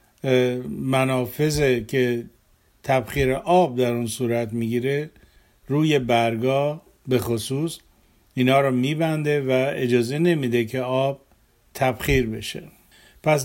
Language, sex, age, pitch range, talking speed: Persian, male, 50-69, 125-150 Hz, 105 wpm